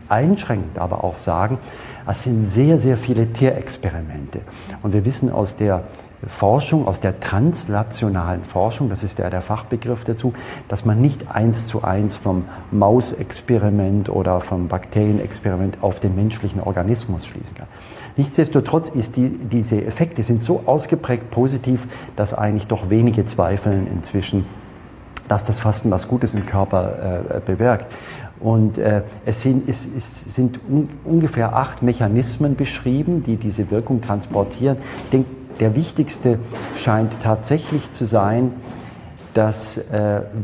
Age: 50-69